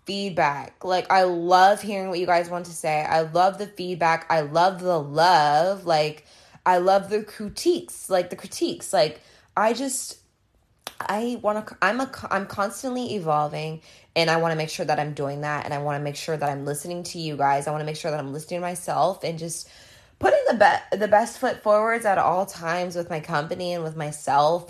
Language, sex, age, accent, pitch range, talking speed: English, female, 20-39, American, 150-190 Hz, 215 wpm